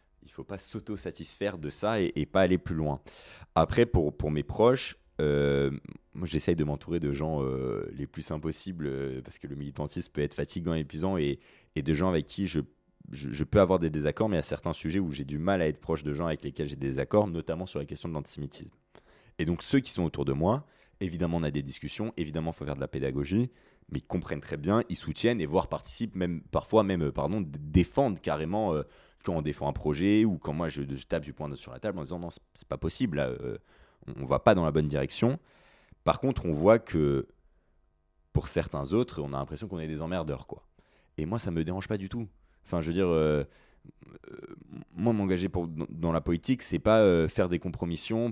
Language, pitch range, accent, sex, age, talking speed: French, 75-95 Hz, French, male, 20-39, 235 wpm